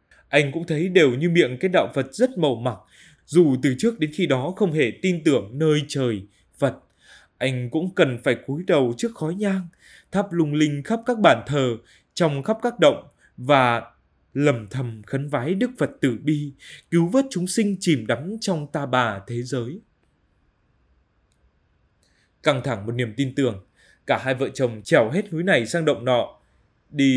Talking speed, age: 185 wpm, 20-39